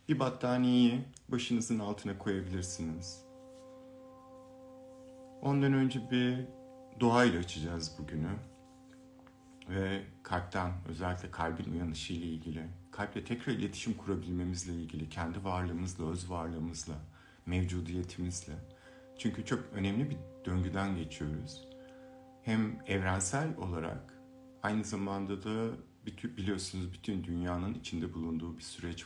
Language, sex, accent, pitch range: Turkish, male, native, 85-125 Hz